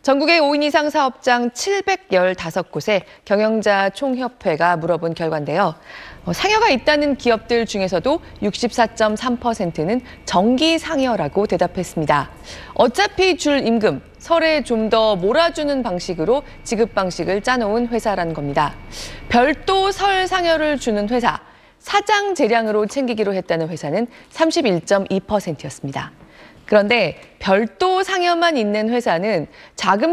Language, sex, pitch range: Korean, female, 185-305 Hz